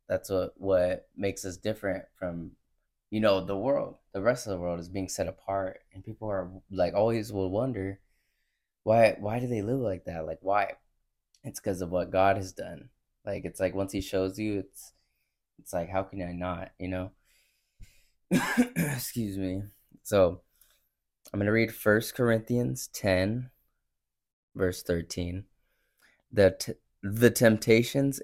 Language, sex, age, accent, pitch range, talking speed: English, male, 20-39, American, 95-115 Hz, 160 wpm